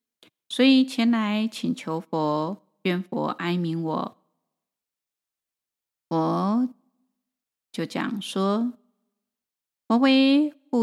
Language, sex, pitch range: Chinese, female, 175-235 Hz